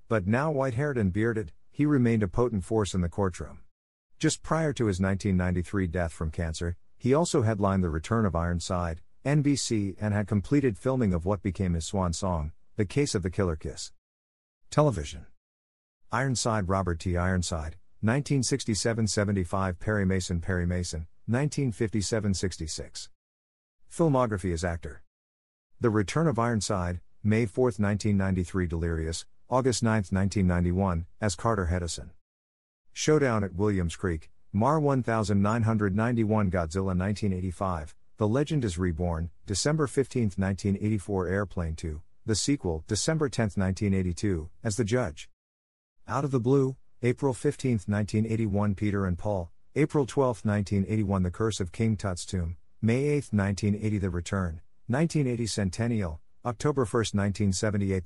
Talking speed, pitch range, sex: 130 wpm, 90-115 Hz, male